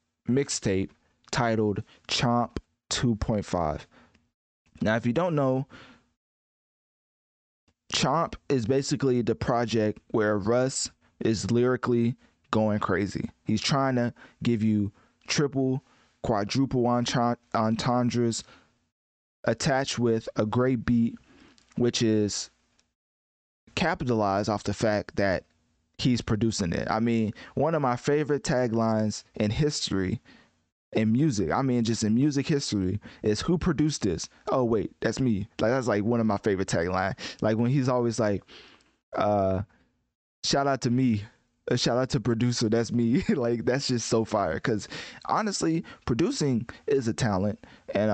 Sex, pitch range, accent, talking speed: male, 105-125 Hz, American, 130 wpm